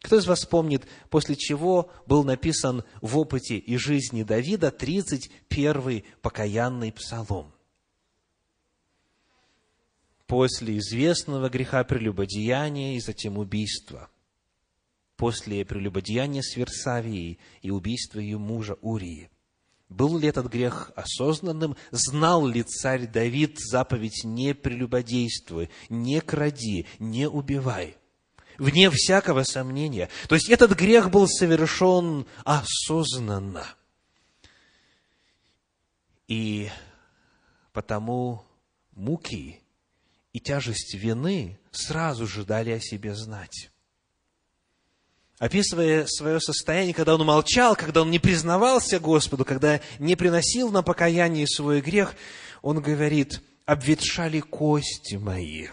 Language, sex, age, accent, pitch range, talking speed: Russian, male, 30-49, native, 105-155 Hz, 100 wpm